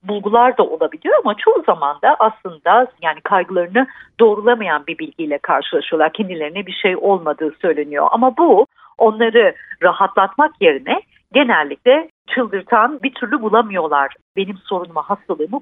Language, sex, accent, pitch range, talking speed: Turkish, female, native, 185-255 Hz, 125 wpm